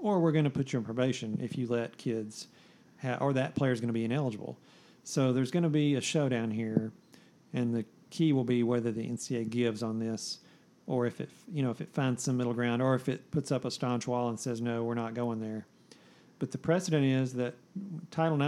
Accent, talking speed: American, 220 wpm